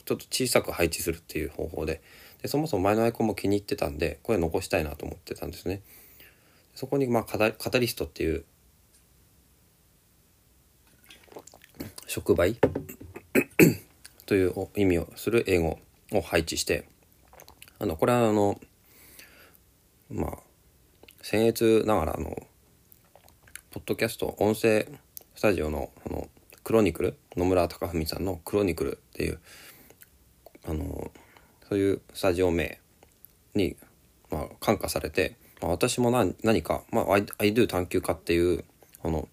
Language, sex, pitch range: Japanese, male, 85-110 Hz